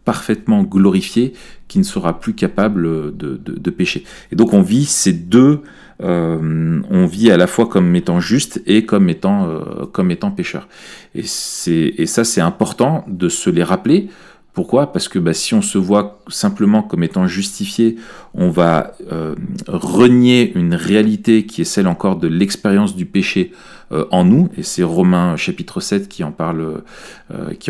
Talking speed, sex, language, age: 170 wpm, male, French, 40-59